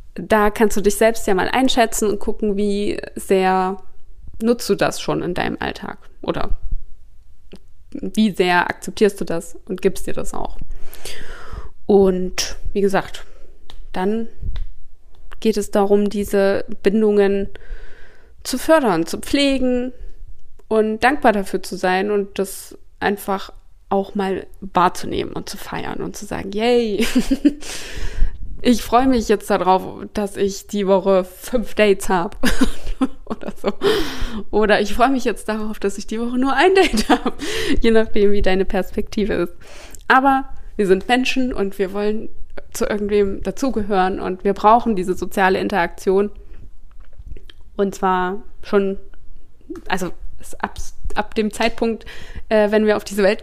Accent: German